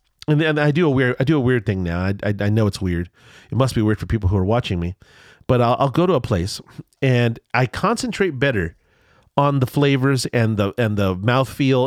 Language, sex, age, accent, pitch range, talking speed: English, male, 40-59, American, 105-150 Hz, 240 wpm